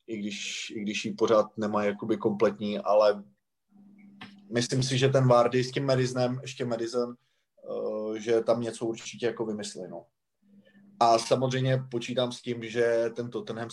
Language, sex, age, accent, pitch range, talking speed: Czech, male, 30-49, native, 120-145 Hz, 145 wpm